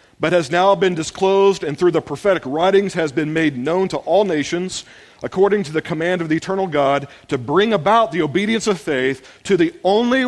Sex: male